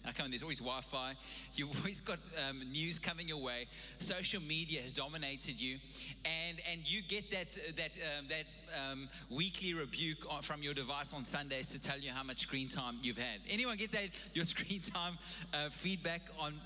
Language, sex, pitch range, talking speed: English, male, 160-200 Hz, 195 wpm